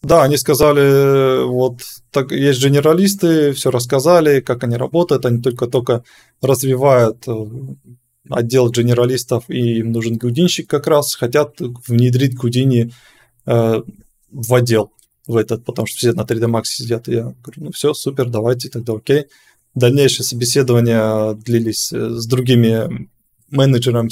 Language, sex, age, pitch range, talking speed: Russian, male, 20-39, 120-140 Hz, 130 wpm